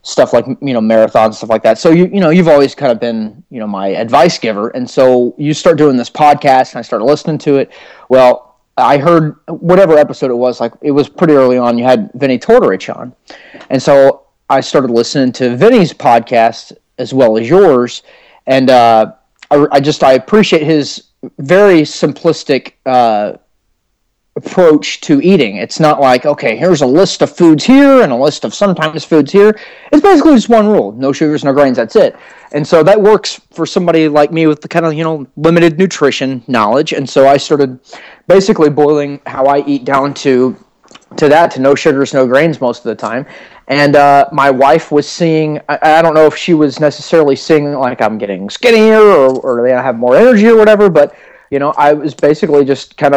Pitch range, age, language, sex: 130-170 Hz, 30-49, English, male